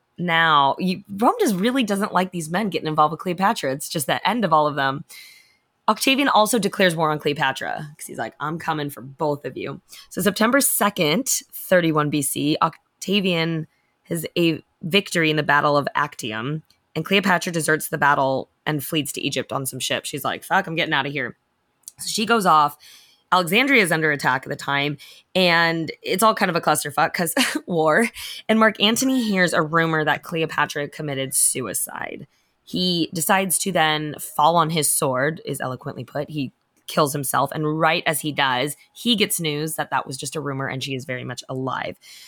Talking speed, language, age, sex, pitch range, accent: 190 wpm, English, 20-39, female, 145-185 Hz, American